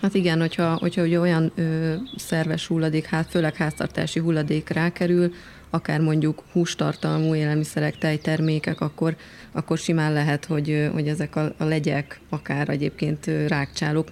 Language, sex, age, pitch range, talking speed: Hungarian, female, 30-49, 145-165 Hz, 135 wpm